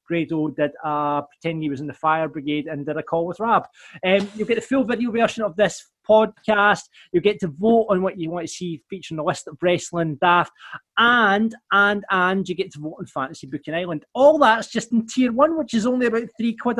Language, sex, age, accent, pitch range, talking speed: English, male, 20-39, British, 150-200 Hz, 230 wpm